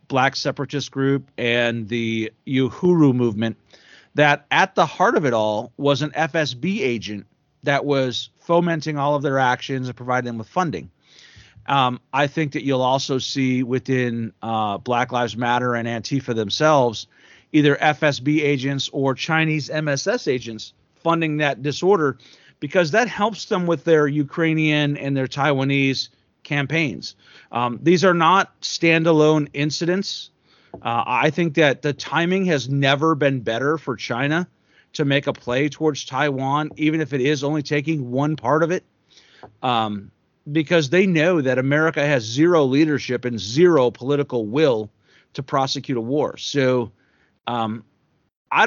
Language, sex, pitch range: English, male, 125-160 Hz